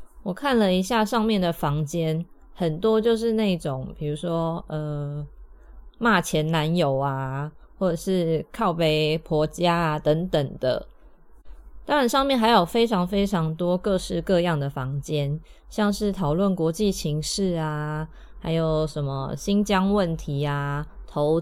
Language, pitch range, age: Chinese, 150-195 Hz, 20-39